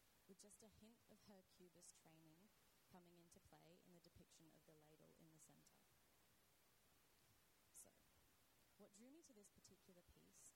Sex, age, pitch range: female, 20-39, 165-200 Hz